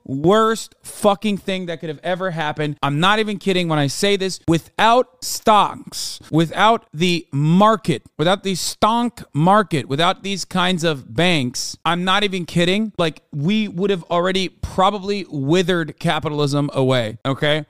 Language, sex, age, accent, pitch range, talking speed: English, male, 30-49, American, 130-175 Hz, 150 wpm